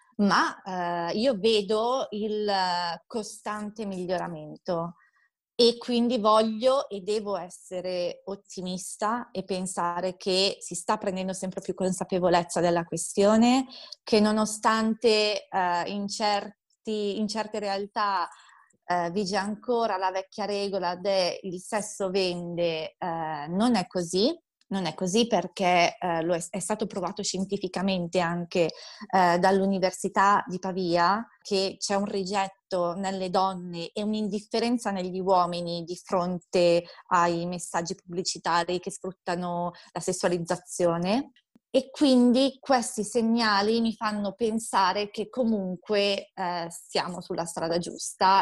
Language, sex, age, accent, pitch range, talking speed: Italian, female, 20-39, native, 180-215 Hz, 115 wpm